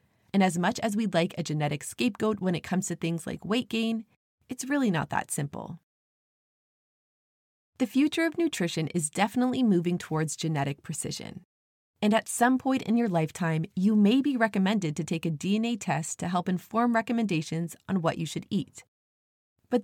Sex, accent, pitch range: female, American, 160-225 Hz